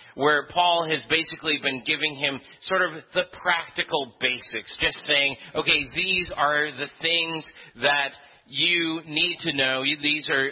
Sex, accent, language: male, American, English